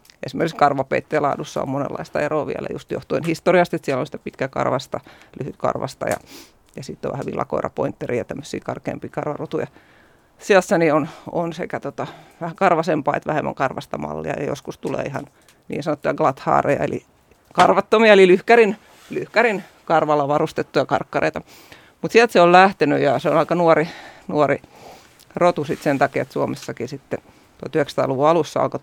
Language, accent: Finnish, native